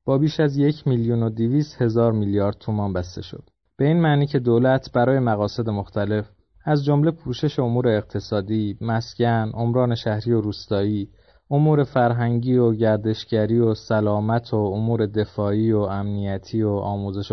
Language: English